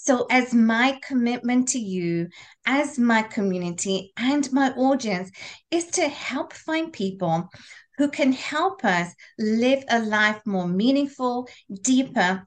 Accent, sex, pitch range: British, female, 195-275 Hz